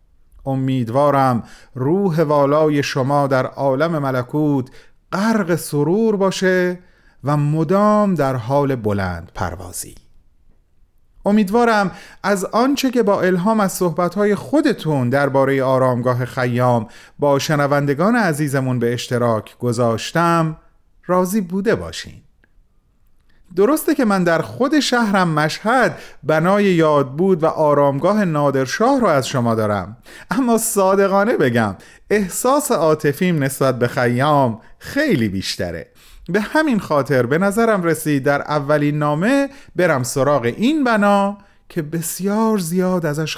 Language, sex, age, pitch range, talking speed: Persian, male, 30-49, 125-185 Hz, 115 wpm